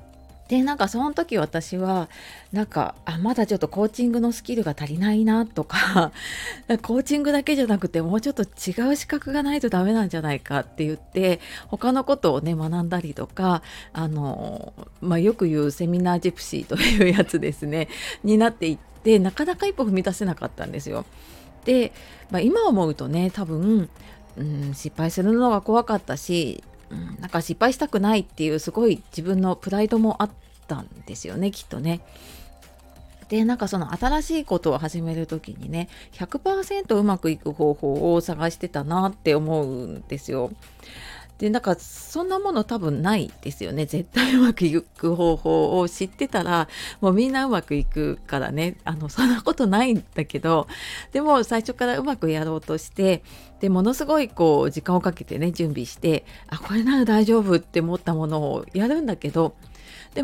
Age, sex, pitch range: 30-49, female, 160-230 Hz